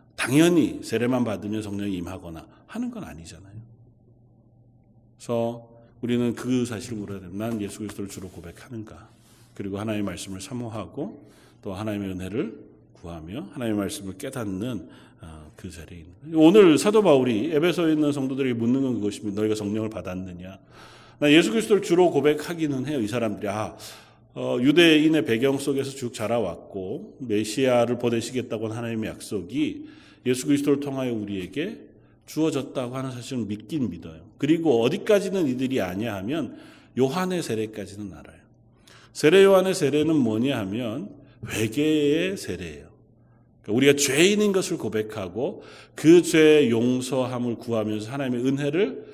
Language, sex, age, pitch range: Korean, male, 40-59, 105-145 Hz